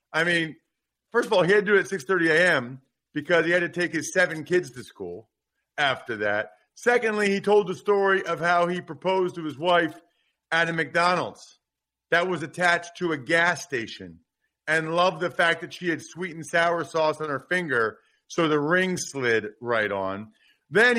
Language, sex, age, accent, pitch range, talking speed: English, male, 40-59, American, 150-185 Hz, 195 wpm